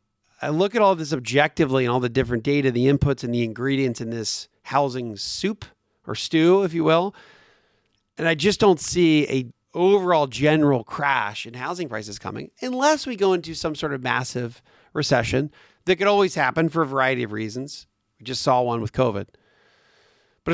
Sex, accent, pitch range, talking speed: male, American, 120-165 Hz, 185 wpm